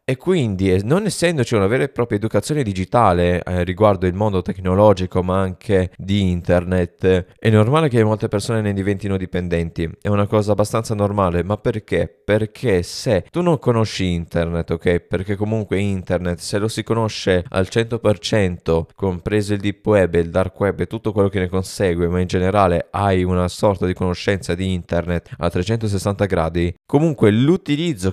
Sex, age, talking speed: male, 20-39, 165 wpm